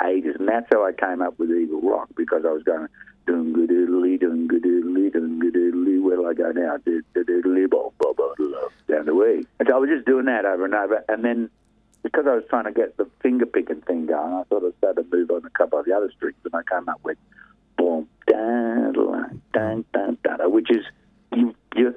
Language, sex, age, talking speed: English, male, 50-69, 215 wpm